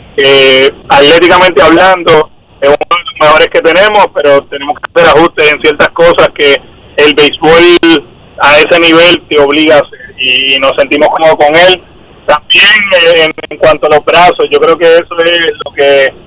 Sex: male